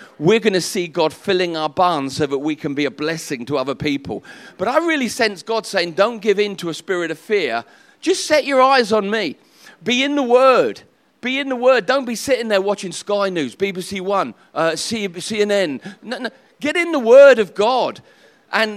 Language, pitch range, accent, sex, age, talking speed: English, 175-230 Hz, British, male, 40-59, 205 wpm